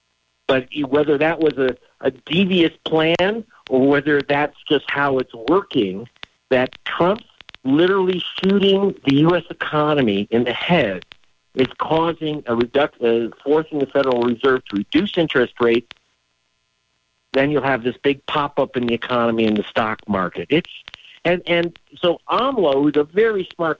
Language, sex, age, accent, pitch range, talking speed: English, male, 50-69, American, 115-150 Hz, 150 wpm